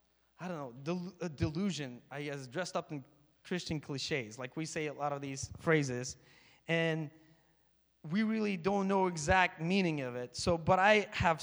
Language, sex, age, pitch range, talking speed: English, male, 20-39, 155-210 Hz, 180 wpm